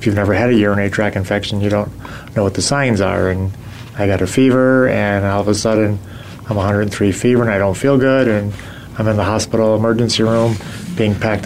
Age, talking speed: 30-49, 220 wpm